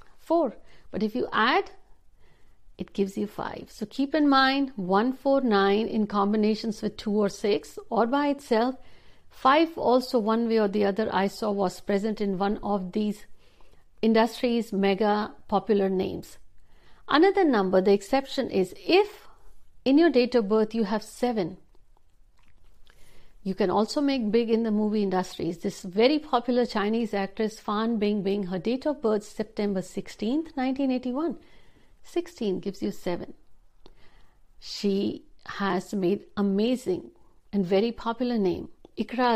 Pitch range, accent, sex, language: 200-255 Hz, native, female, Hindi